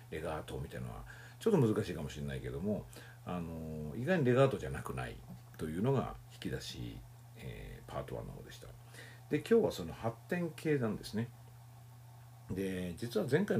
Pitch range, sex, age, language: 115-150 Hz, male, 50-69, Japanese